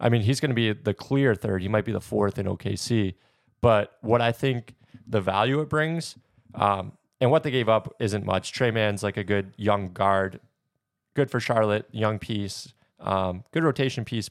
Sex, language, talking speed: male, English, 200 wpm